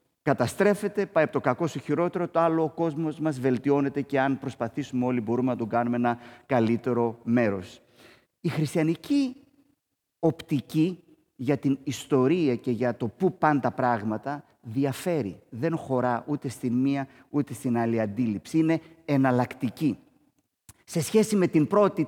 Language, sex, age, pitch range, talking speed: Greek, male, 30-49, 125-165 Hz, 145 wpm